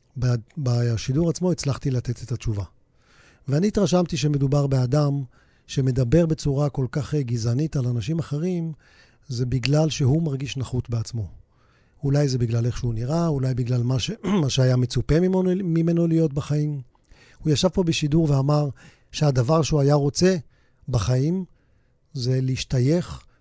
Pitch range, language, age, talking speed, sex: 125-165 Hz, Hebrew, 40-59, 135 wpm, male